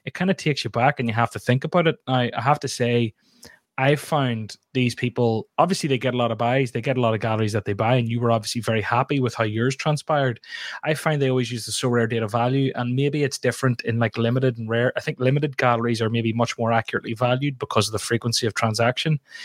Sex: male